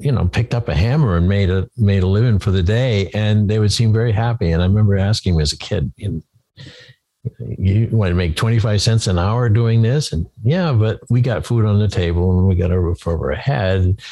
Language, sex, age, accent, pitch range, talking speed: English, male, 60-79, American, 90-115 Hz, 240 wpm